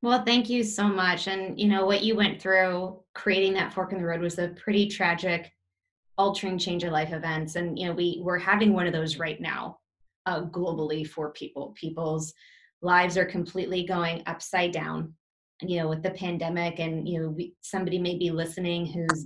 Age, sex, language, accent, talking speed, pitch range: 20-39, female, English, American, 195 wpm, 170-195 Hz